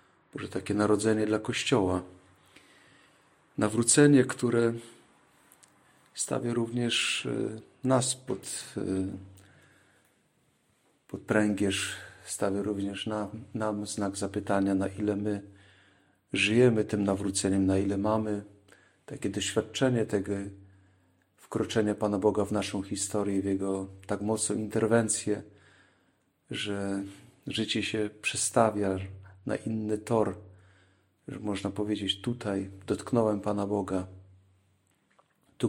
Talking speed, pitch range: 95 wpm, 95-110 Hz